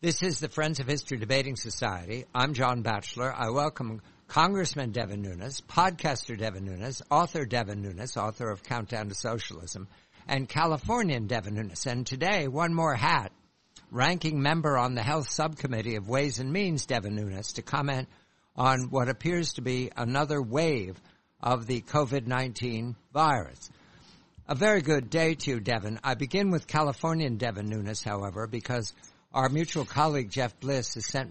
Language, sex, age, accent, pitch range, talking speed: English, male, 60-79, American, 115-145 Hz, 160 wpm